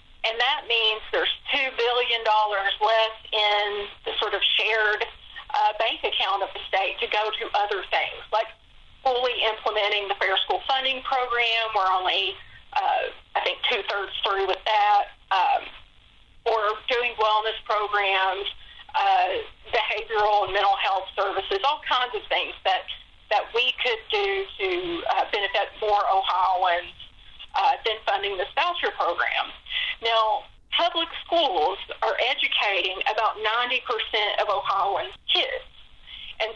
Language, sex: English, female